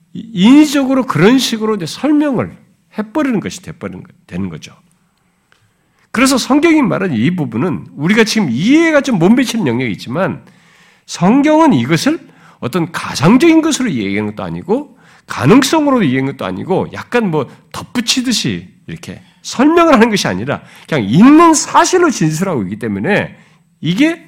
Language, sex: Korean, male